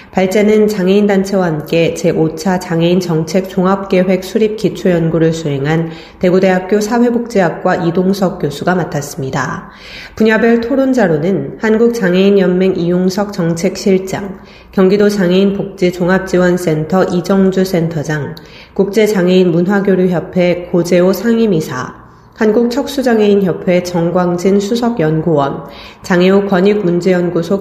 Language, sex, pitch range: Korean, female, 170-200 Hz